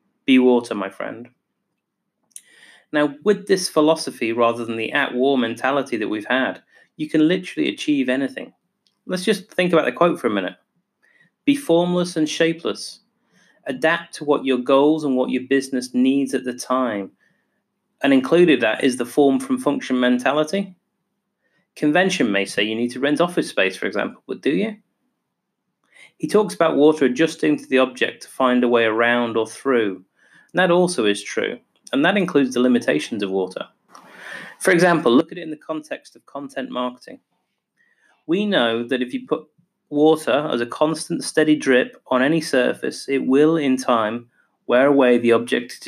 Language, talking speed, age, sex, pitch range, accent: English, 170 wpm, 30-49, male, 125-165 Hz, British